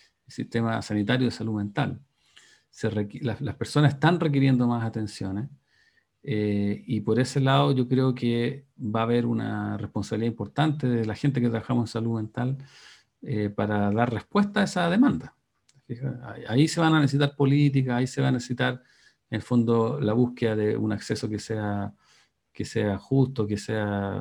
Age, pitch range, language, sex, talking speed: 40-59, 105-130 Hz, Spanish, male, 175 wpm